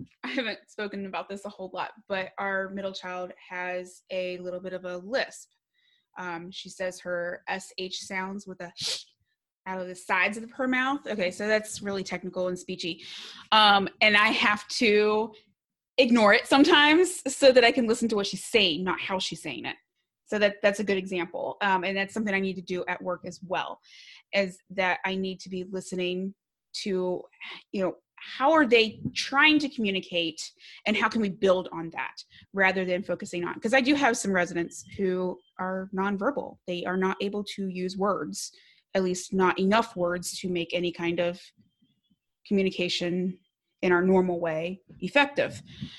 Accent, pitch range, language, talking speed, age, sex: American, 180-215 Hz, English, 185 wpm, 20-39, female